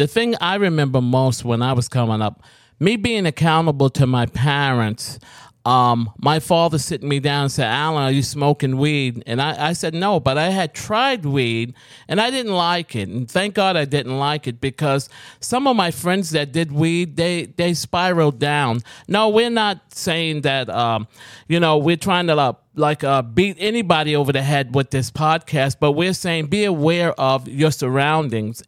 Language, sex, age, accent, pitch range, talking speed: English, male, 40-59, American, 135-180 Hz, 195 wpm